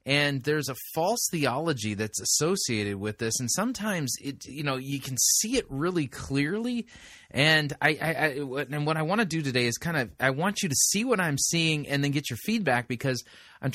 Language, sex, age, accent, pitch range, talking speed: English, male, 30-49, American, 110-150 Hz, 215 wpm